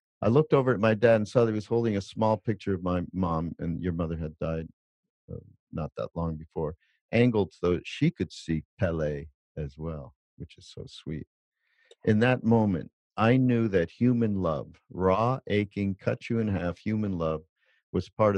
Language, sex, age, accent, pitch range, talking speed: English, male, 50-69, American, 80-110 Hz, 195 wpm